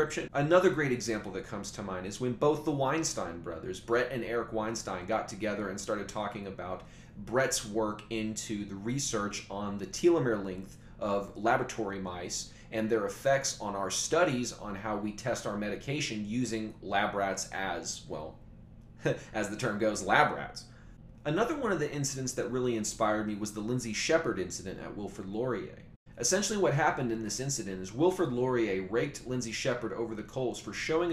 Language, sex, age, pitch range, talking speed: English, male, 30-49, 105-145 Hz, 175 wpm